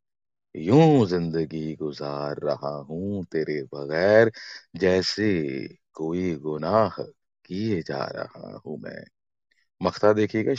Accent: native